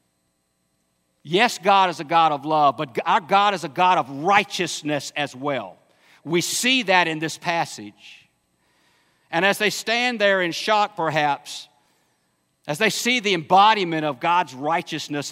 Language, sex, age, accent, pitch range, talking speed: English, male, 50-69, American, 145-210 Hz, 155 wpm